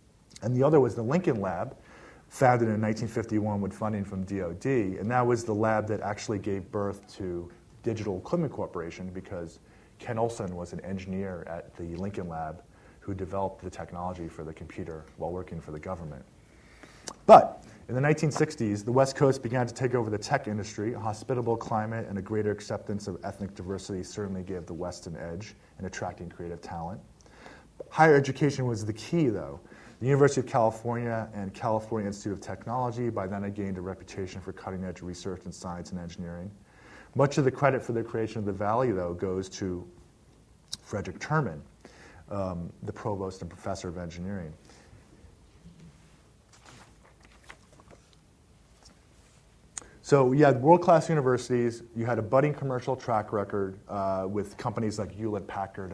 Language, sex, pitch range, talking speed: English, male, 90-115 Hz, 160 wpm